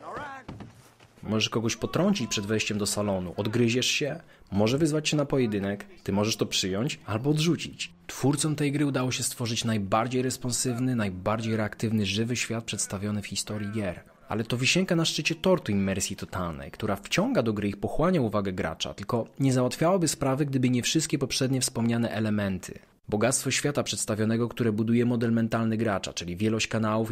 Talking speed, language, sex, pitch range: 160 wpm, Polish, male, 105-125 Hz